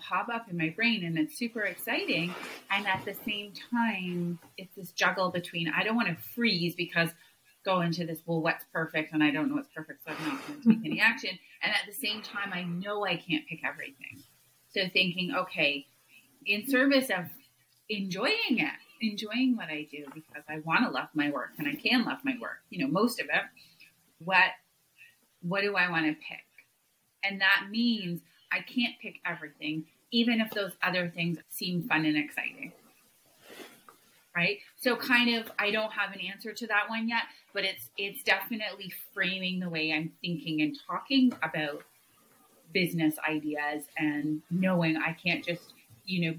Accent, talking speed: American, 185 wpm